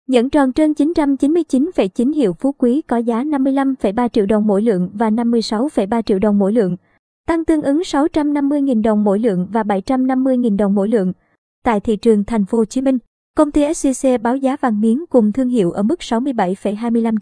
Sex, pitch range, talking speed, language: male, 215-260 Hz, 185 wpm, Vietnamese